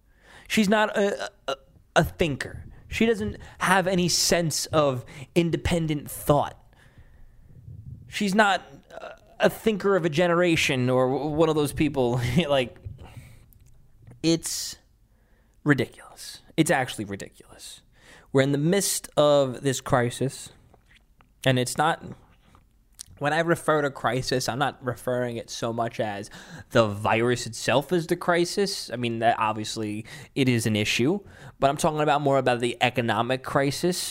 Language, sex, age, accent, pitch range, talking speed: English, male, 20-39, American, 125-190 Hz, 135 wpm